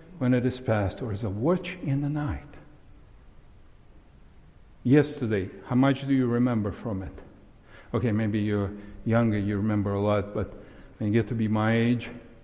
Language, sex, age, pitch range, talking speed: English, male, 60-79, 105-130 Hz, 170 wpm